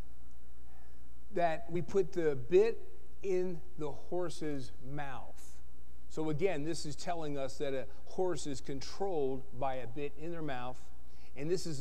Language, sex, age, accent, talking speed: English, male, 40-59, American, 145 wpm